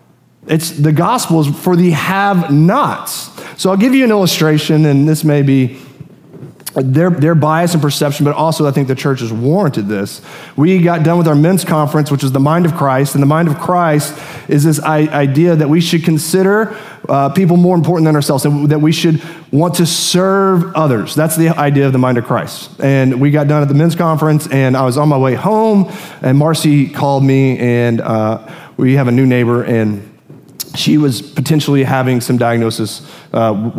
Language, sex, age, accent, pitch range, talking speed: English, male, 30-49, American, 135-165 Hz, 200 wpm